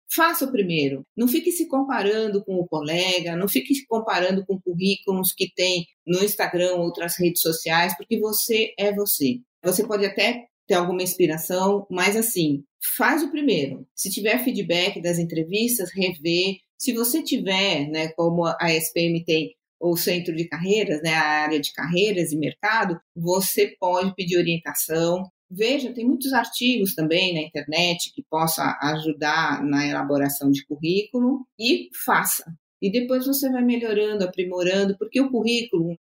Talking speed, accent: 155 wpm, Brazilian